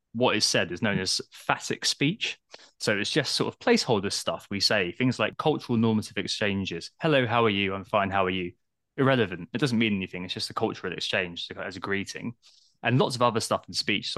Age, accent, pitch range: 20-39, British, 100-130 Hz